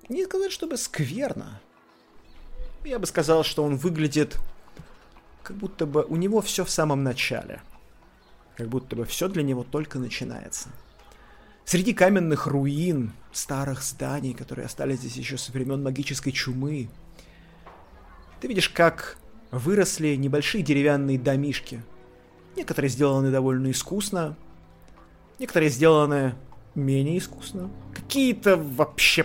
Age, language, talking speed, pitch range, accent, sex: 30-49, Russian, 115 wpm, 130-175 Hz, native, male